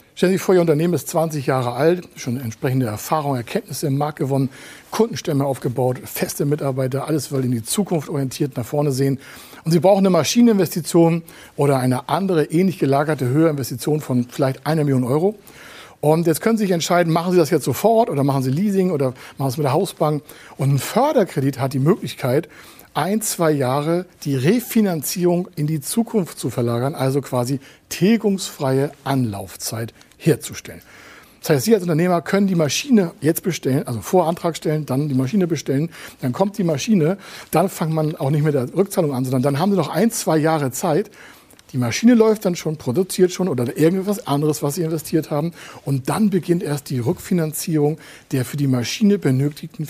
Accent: German